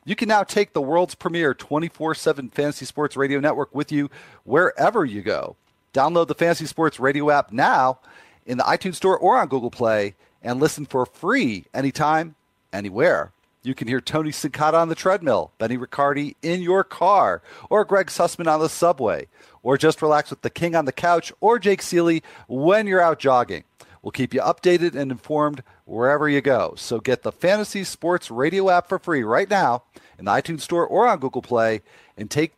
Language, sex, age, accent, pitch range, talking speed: English, male, 40-59, American, 135-170 Hz, 190 wpm